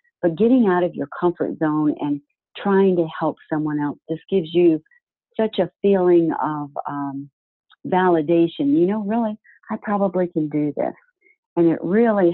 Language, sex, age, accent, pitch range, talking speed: English, female, 50-69, American, 145-185 Hz, 160 wpm